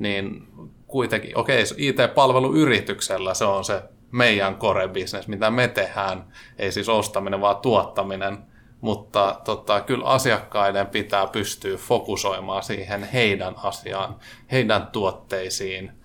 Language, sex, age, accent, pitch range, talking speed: Finnish, male, 30-49, native, 100-120 Hz, 110 wpm